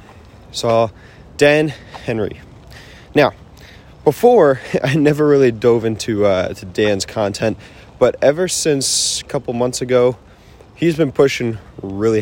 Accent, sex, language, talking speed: American, male, English, 125 wpm